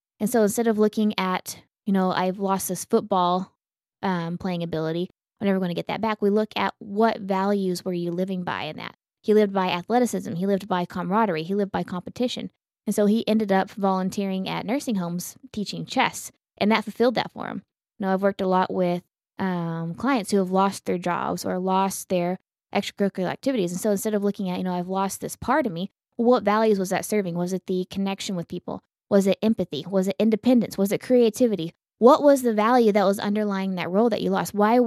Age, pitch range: 20-39, 185-225 Hz